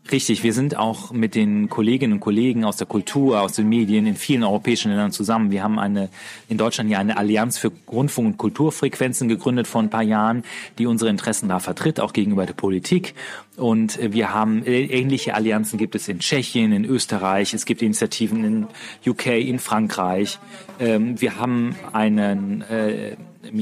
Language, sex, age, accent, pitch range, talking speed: German, male, 40-59, German, 105-125 Hz, 175 wpm